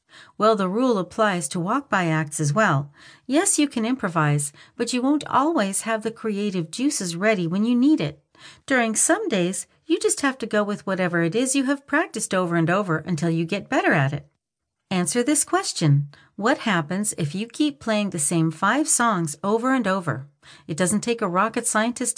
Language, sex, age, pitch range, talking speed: English, female, 50-69, 170-255 Hz, 195 wpm